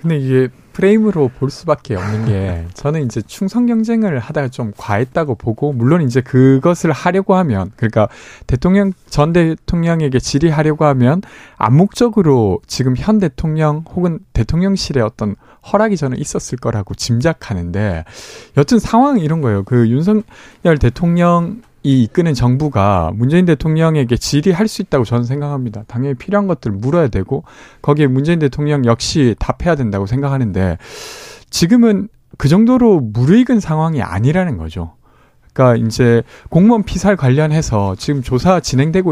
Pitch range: 120-175 Hz